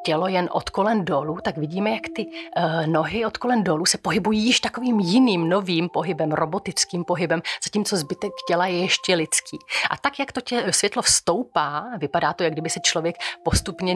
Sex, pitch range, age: female, 165-200 Hz, 30-49